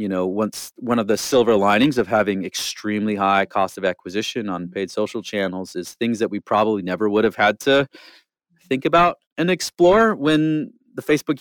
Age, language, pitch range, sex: 30-49, English, 100-125 Hz, male